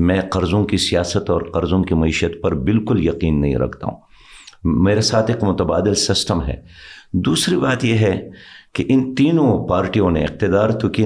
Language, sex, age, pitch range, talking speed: Urdu, male, 50-69, 90-120 Hz, 175 wpm